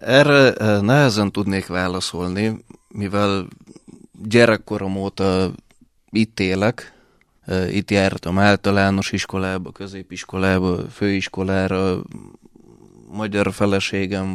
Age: 20-39